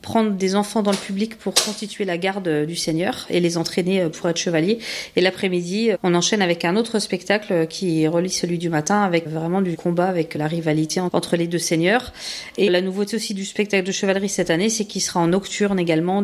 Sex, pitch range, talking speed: female, 170-200 Hz, 215 wpm